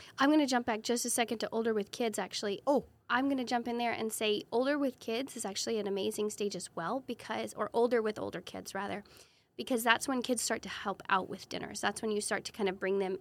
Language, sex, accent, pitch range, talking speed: English, female, American, 200-240 Hz, 265 wpm